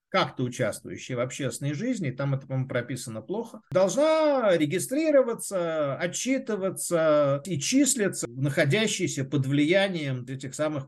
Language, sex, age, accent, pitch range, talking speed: Russian, male, 50-69, native, 135-195 Hz, 110 wpm